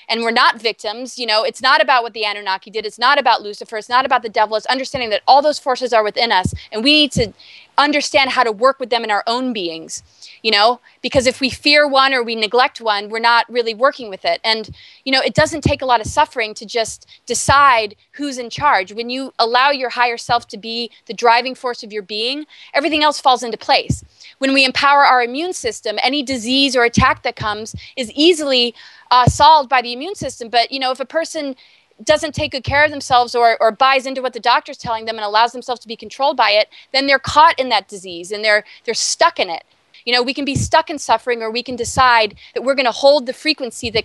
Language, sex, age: English, female, 20-39